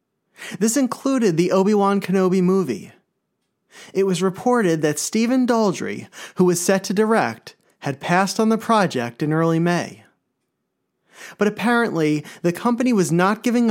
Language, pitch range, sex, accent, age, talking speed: English, 165-215 Hz, male, American, 30-49, 140 wpm